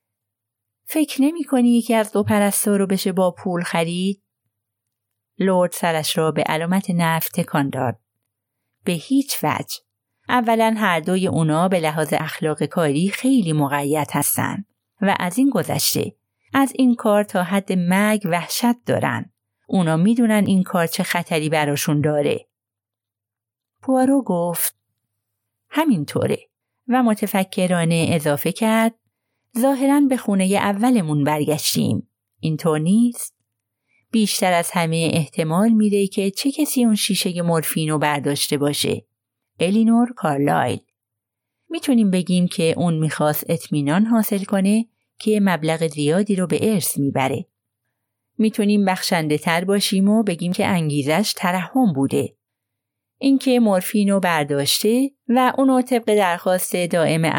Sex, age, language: female, 30-49, Persian